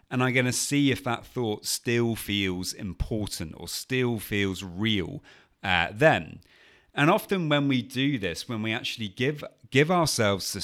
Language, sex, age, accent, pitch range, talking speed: English, male, 30-49, British, 90-120 Hz, 170 wpm